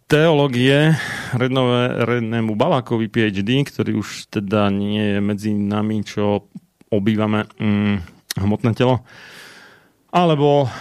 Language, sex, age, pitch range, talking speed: Slovak, male, 30-49, 100-125 Hz, 95 wpm